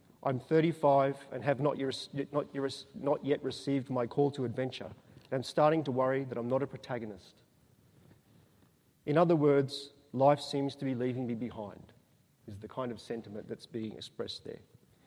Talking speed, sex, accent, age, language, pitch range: 160 wpm, male, Australian, 40-59, English, 130-150 Hz